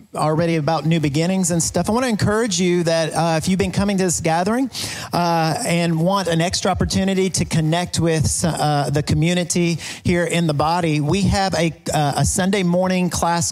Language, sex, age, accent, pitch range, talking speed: English, male, 40-59, American, 150-185 Hz, 195 wpm